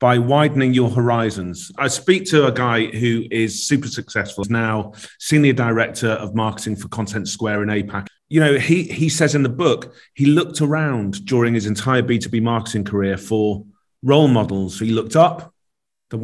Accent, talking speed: British, 175 wpm